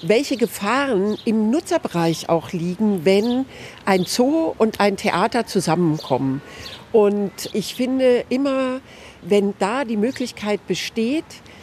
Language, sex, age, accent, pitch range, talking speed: German, female, 50-69, German, 195-245 Hz, 115 wpm